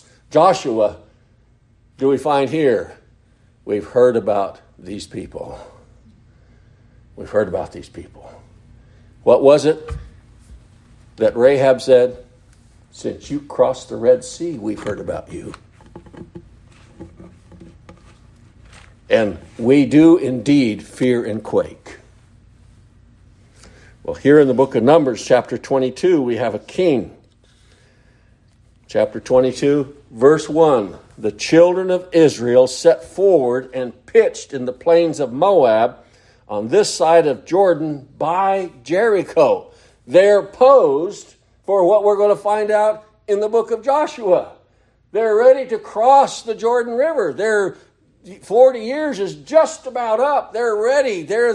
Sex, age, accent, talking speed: male, 60-79, American, 125 wpm